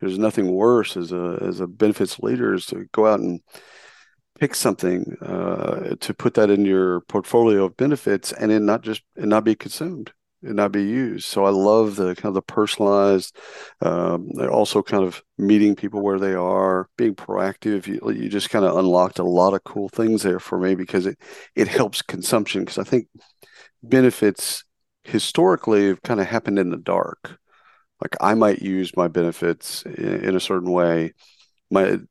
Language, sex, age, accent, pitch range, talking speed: English, male, 50-69, American, 90-105 Hz, 185 wpm